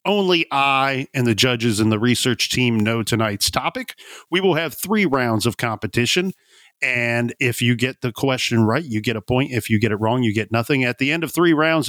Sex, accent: male, American